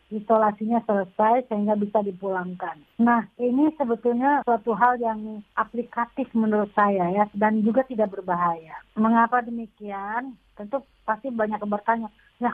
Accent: native